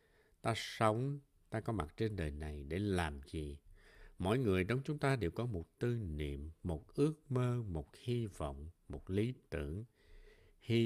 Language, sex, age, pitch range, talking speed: Vietnamese, male, 60-79, 80-115 Hz, 170 wpm